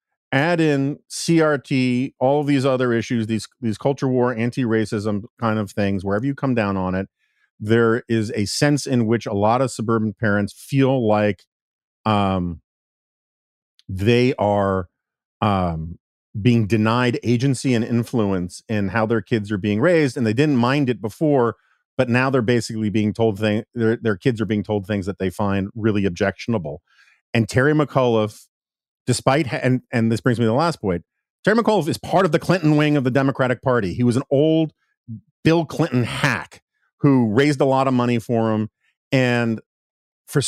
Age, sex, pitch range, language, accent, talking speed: 40-59, male, 110-135 Hz, English, American, 175 wpm